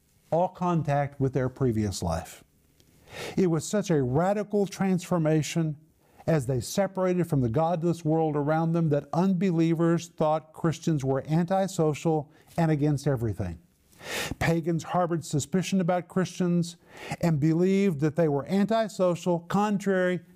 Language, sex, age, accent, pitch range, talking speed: English, male, 50-69, American, 140-180 Hz, 125 wpm